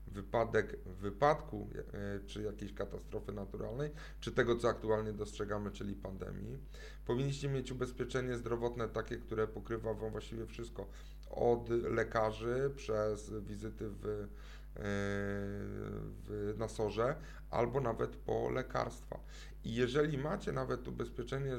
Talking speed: 105 wpm